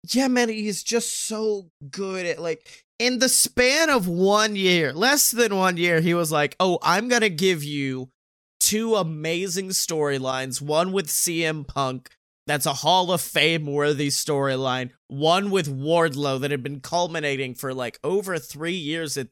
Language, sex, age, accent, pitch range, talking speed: English, male, 20-39, American, 145-195 Hz, 160 wpm